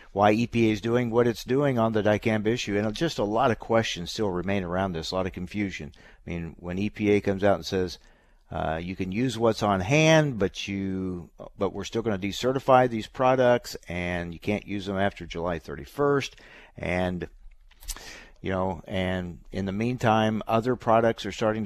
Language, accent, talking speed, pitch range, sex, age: English, American, 190 wpm, 90-115 Hz, male, 50-69